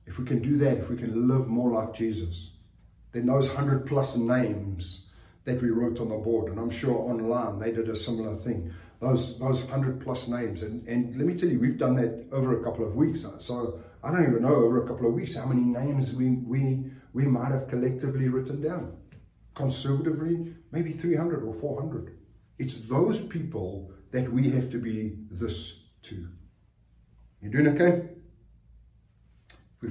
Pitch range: 115-150 Hz